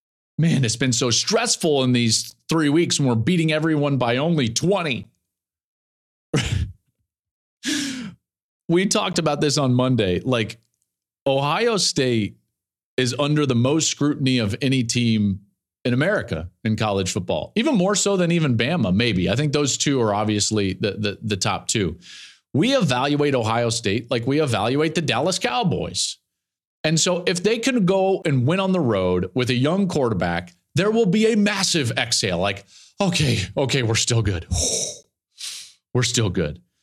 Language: English